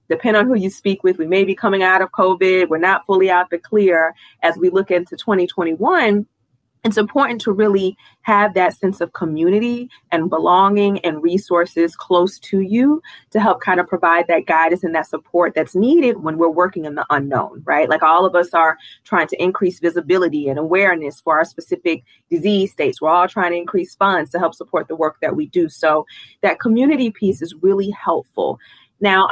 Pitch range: 165-205 Hz